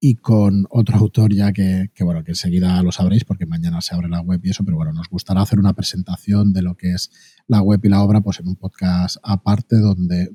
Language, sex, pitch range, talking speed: Spanish, male, 95-110 Hz, 245 wpm